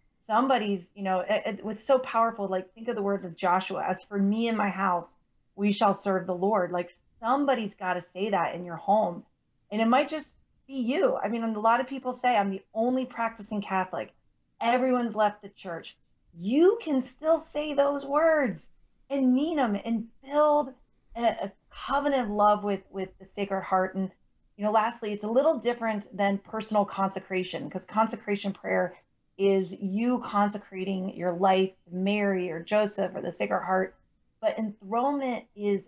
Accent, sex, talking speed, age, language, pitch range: American, female, 175 wpm, 30-49, English, 190-230 Hz